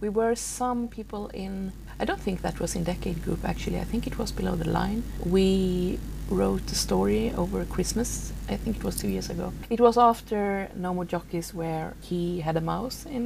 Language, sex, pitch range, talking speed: English, female, 170-205 Hz, 210 wpm